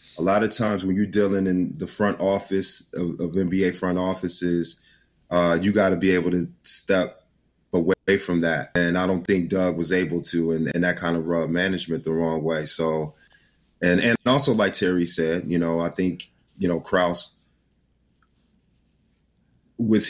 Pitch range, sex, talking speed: 85-100 Hz, male, 180 wpm